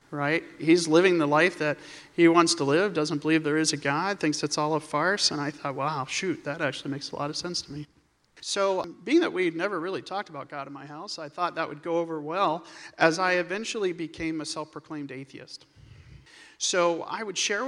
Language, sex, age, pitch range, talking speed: English, male, 40-59, 150-190 Hz, 225 wpm